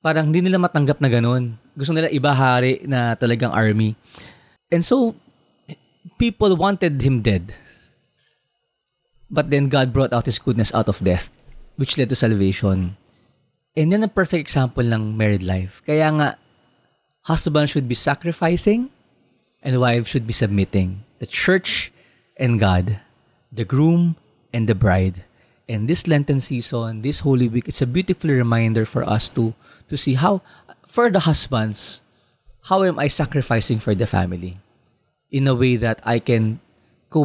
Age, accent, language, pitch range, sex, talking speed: 20-39, native, Filipino, 115-150 Hz, male, 150 wpm